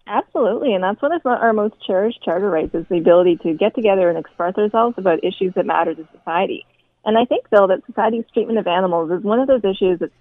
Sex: female